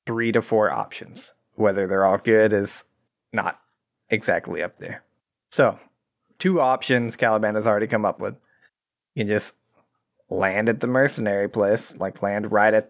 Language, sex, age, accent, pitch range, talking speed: English, male, 20-39, American, 100-125 Hz, 160 wpm